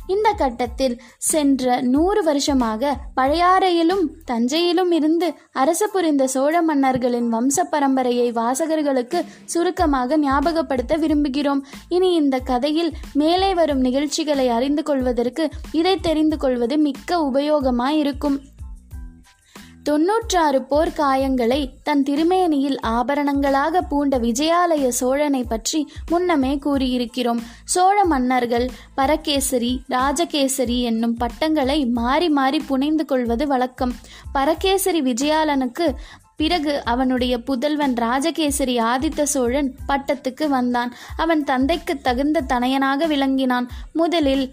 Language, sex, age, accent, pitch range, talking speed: Tamil, female, 20-39, native, 255-315 Hz, 95 wpm